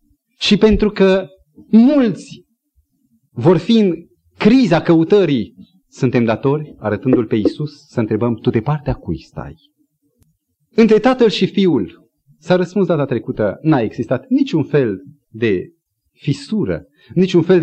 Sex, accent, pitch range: male, native, 120-200 Hz